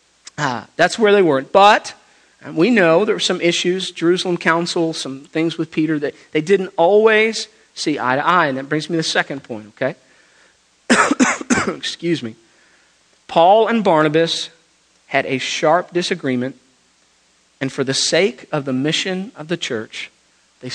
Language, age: English, 40-59